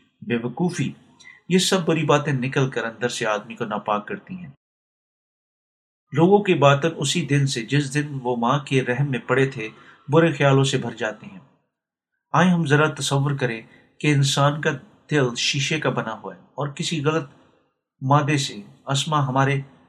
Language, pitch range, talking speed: Urdu, 125-145 Hz, 170 wpm